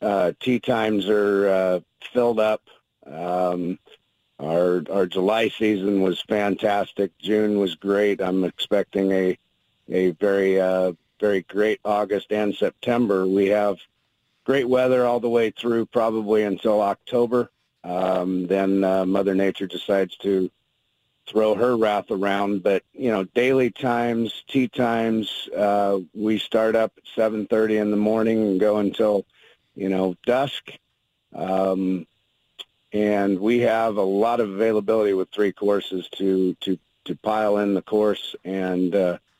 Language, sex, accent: English, male, American